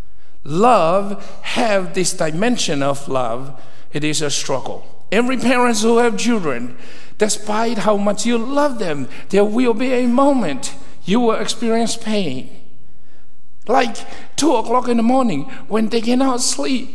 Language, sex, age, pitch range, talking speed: English, male, 60-79, 185-250 Hz, 140 wpm